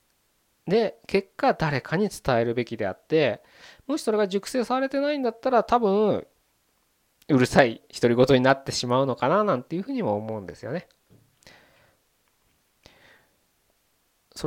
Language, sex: Japanese, male